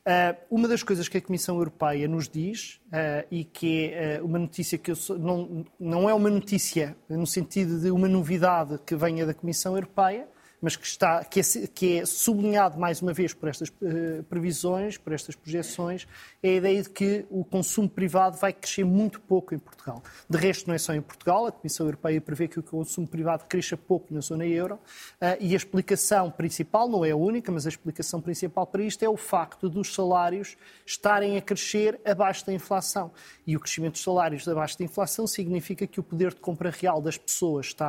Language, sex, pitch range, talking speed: Portuguese, male, 165-195 Hz, 205 wpm